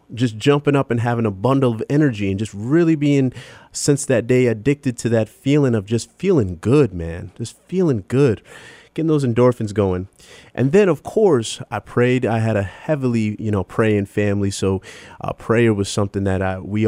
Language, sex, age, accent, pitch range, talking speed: English, male, 30-49, American, 105-140 Hz, 190 wpm